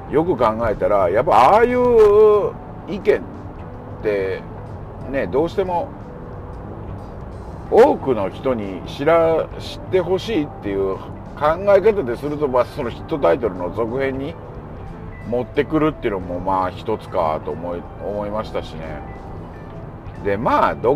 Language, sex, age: Japanese, male, 50-69